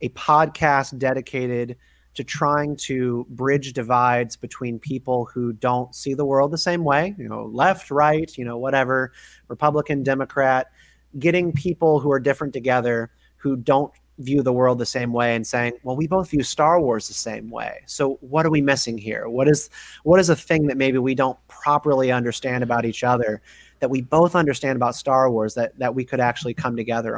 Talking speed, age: 190 wpm, 30-49